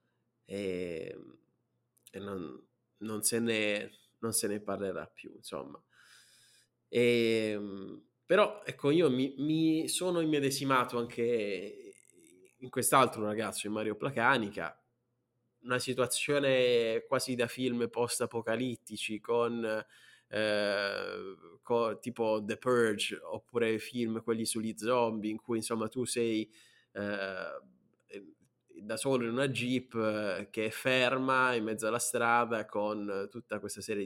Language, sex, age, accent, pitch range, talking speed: Italian, male, 20-39, native, 105-125 Hz, 105 wpm